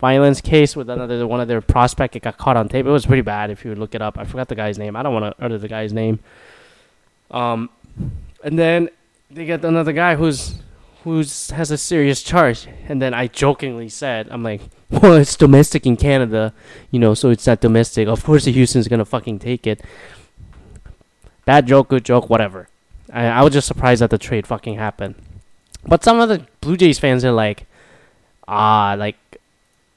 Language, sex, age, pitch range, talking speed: English, male, 20-39, 110-145 Hz, 200 wpm